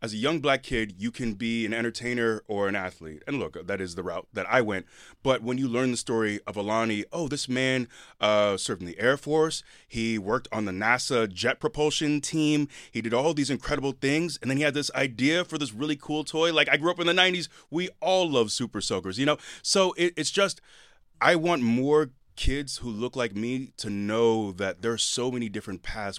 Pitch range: 110-145 Hz